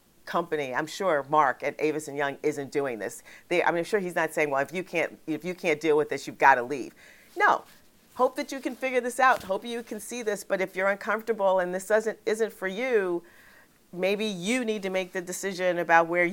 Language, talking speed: English, 240 wpm